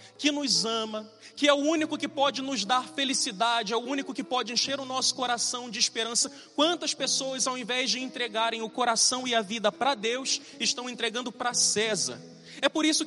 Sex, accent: male, Brazilian